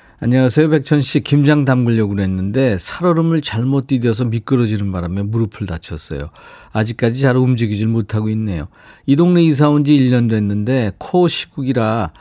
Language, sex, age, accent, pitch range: Korean, male, 40-59, native, 105-140 Hz